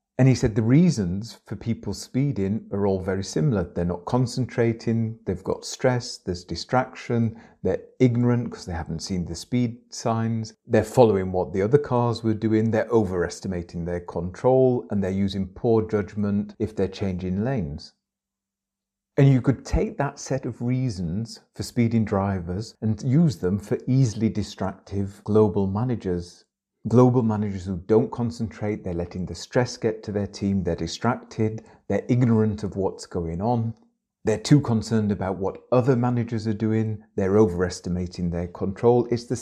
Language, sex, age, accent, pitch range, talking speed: English, male, 40-59, British, 95-120 Hz, 160 wpm